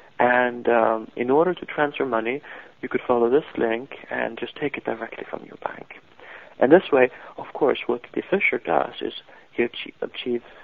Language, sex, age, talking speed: English, male, 40-59, 185 wpm